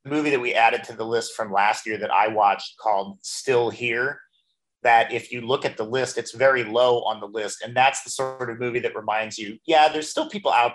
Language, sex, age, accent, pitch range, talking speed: English, male, 40-59, American, 110-130 Hz, 240 wpm